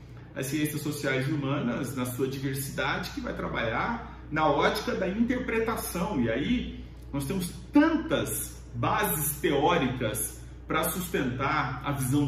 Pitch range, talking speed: 120-180 Hz, 125 wpm